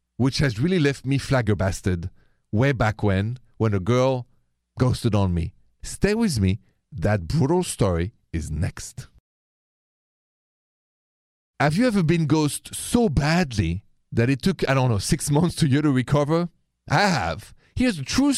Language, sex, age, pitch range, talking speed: English, male, 50-69, 110-160 Hz, 155 wpm